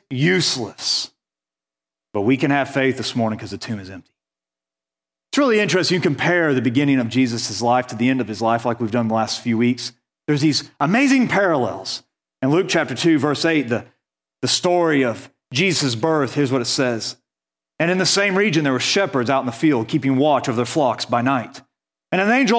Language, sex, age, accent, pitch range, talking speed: English, male, 40-59, American, 125-205 Hz, 205 wpm